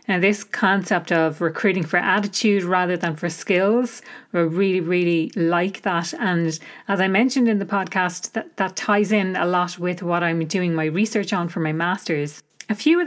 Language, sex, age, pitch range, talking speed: English, female, 30-49, 170-210 Hz, 195 wpm